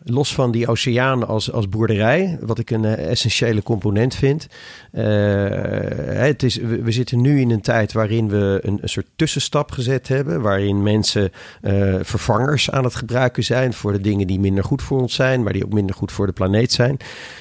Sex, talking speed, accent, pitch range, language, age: male, 200 wpm, Dutch, 105-125 Hz, Dutch, 40-59